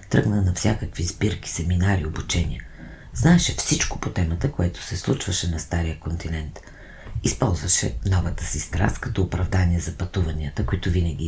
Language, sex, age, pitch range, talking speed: Bulgarian, female, 40-59, 85-100 Hz, 140 wpm